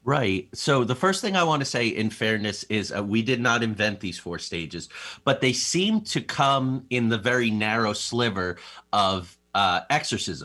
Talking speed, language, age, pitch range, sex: 190 wpm, English, 30-49, 95-125 Hz, male